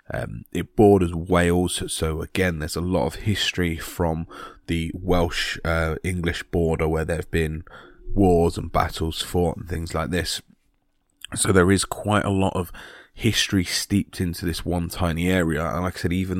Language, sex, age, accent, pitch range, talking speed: English, male, 20-39, British, 85-95 Hz, 170 wpm